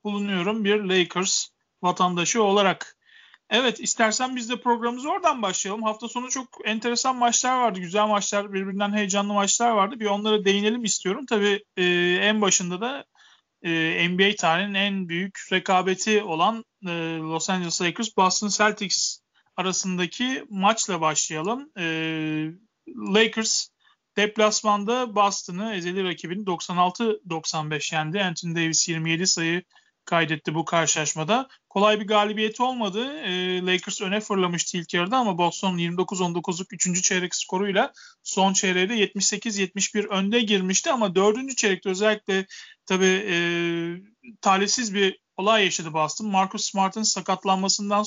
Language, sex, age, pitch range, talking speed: Turkish, male, 40-59, 180-215 Hz, 120 wpm